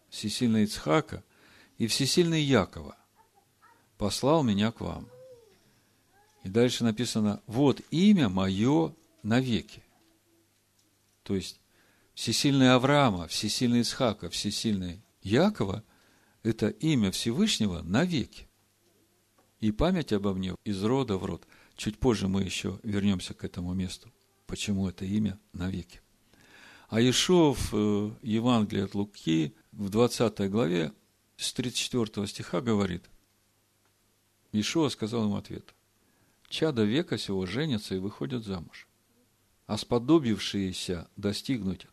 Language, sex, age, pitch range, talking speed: Russian, male, 50-69, 100-125 Hz, 105 wpm